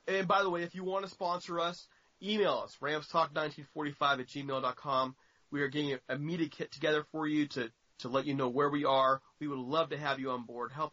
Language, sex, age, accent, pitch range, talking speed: English, male, 30-49, American, 130-160 Hz, 225 wpm